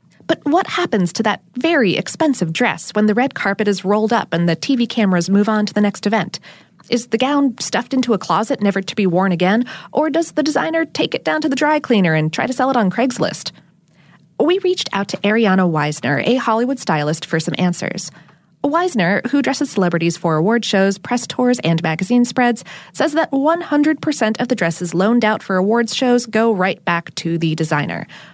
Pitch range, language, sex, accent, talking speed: 180-265 Hz, English, female, American, 205 wpm